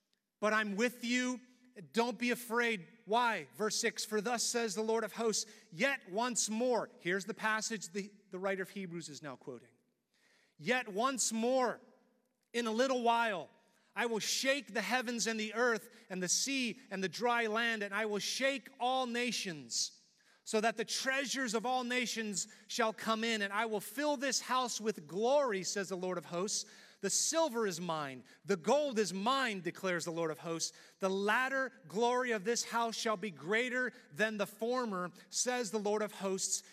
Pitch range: 195-240 Hz